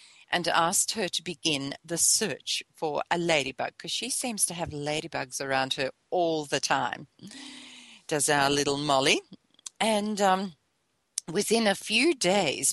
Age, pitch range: 40-59, 160-205 Hz